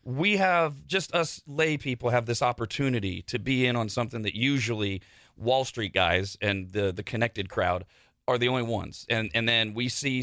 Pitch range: 110-145 Hz